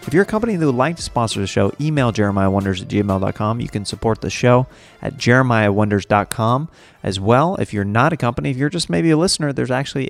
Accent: American